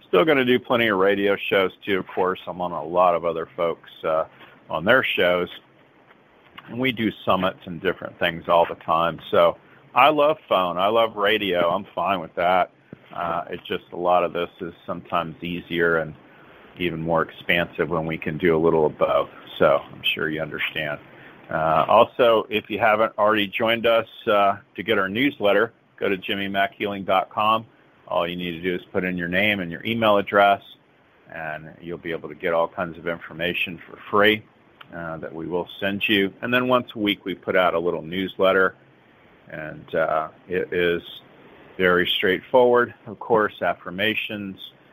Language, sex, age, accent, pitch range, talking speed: English, male, 40-59, American, 85-115 Hz, 185 wpm